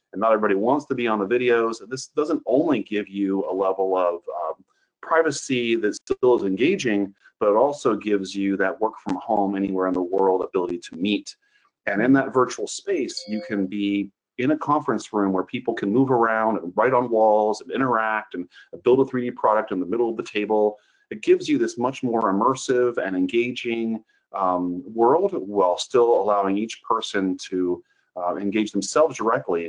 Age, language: 40-59, English